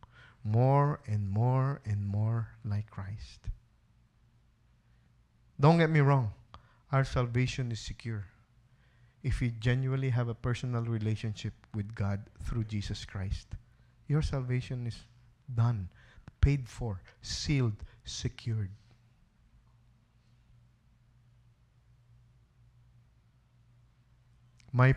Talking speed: 85 wpm